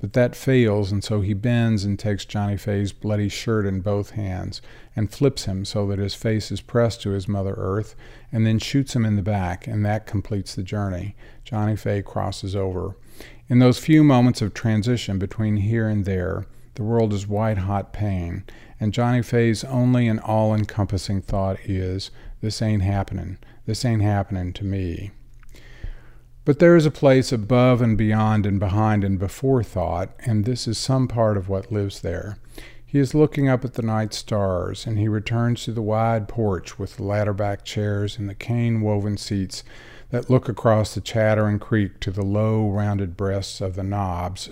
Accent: American